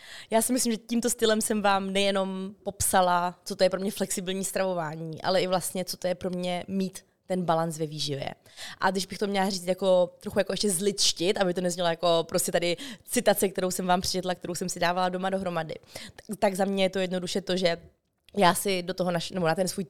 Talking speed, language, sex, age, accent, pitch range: 225 wpm, Czech, female, 20-39, native, 180-205 Hz